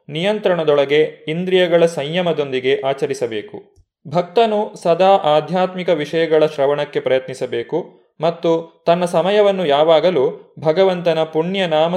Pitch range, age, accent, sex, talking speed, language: 150-190 Hz, 30-49, native, male, 85 wpm, Kannada